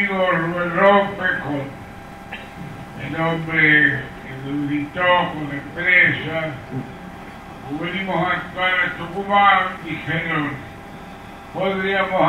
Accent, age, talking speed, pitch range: American, 60-79, 70 wpm, 145-190 Hz